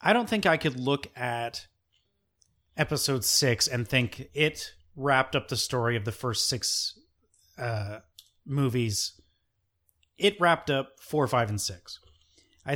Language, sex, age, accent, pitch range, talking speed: English, male, 30-49, American, 110-145 Hz, 140 wpm